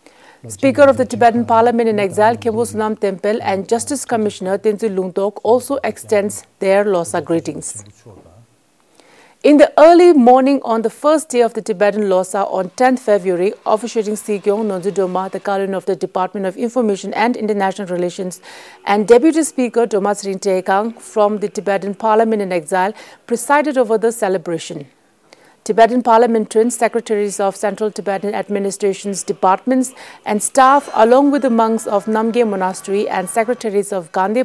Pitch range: 195-235 Hz